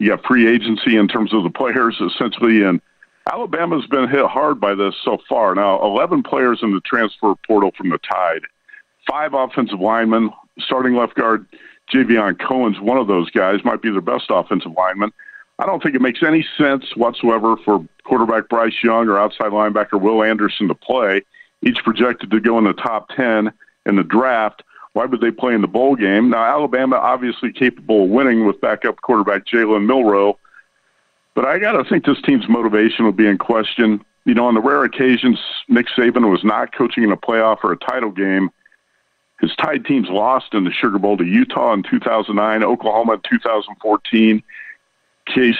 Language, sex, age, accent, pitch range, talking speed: English, male, 50-69, American, 110-125 Hz, 185 wpm